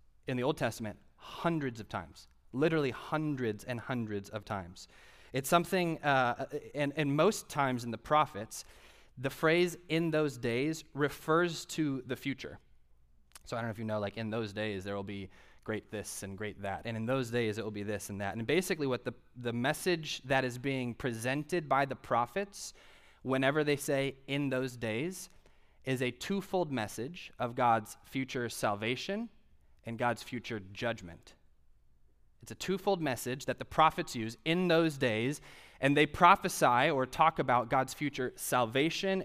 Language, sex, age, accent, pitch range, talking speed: English, male, 20-39, American, 110-145 Hz, 170 wpm